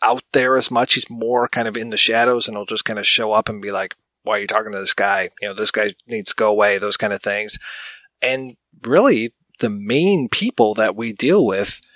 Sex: male